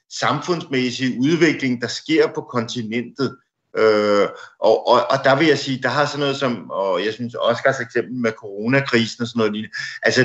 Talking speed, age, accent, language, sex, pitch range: 180 wpm, 50-69, native, Danish, male, 120-160 Hz